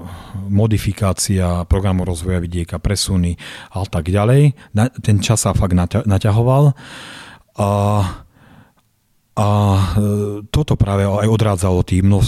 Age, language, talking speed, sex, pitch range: 30-49, Slovak, 110 wpm, male, 90-110 Hz